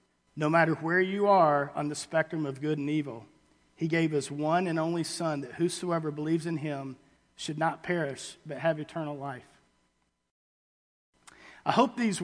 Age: 50-69